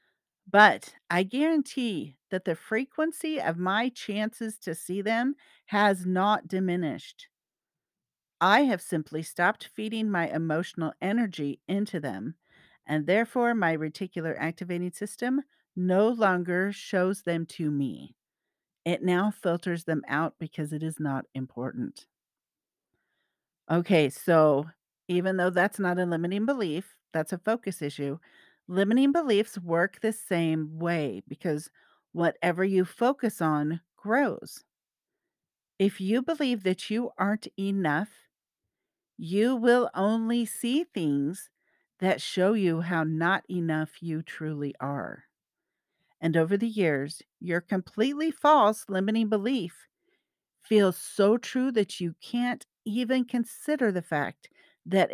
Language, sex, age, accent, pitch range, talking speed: English, female, 50-69, American, 165-220 Hz, 125 wpm